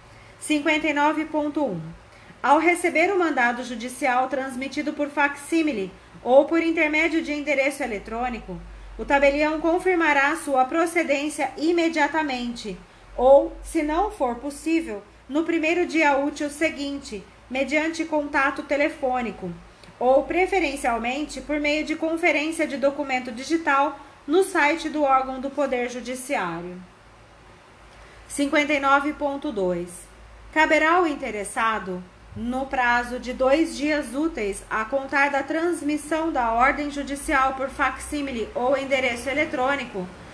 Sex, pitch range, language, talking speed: female, 255-300 Hz, Portuguese, 105 wpm